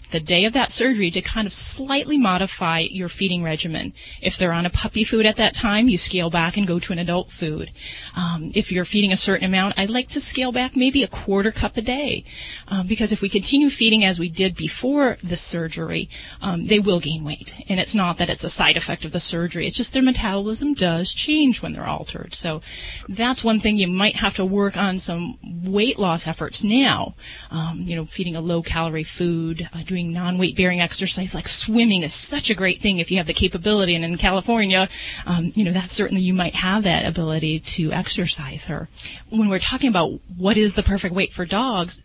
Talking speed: 215 wpm